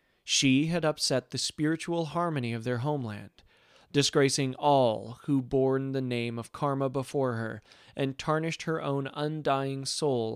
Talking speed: 145 wpm